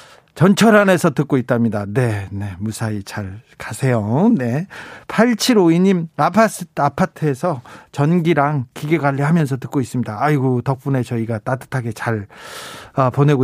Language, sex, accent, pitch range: Korean, male, native, 125-160 Hz